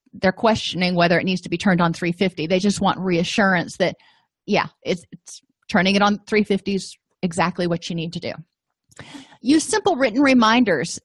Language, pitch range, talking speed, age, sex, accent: English, 185-235 Hz, 180 wpm, 30-49, female, American